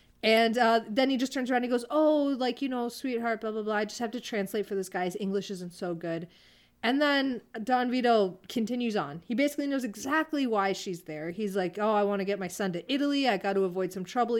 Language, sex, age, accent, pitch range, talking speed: English, female, 30-49, American, 185-255 Hz, 255 wpm